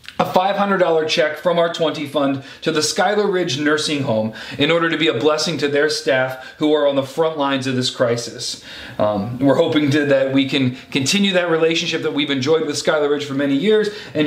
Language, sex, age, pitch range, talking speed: English, male, 40-59, 130-170 Hz, 215 wpm